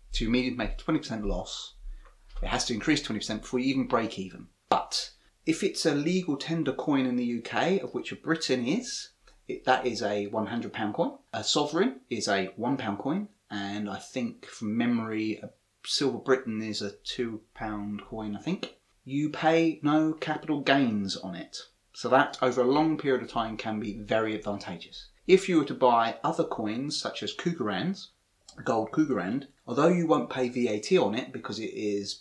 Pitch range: 105-150 Hz